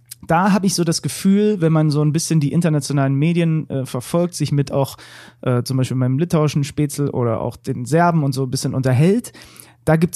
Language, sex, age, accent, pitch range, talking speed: German, male, 30-49, German, 135-175 Hz, 215 wpm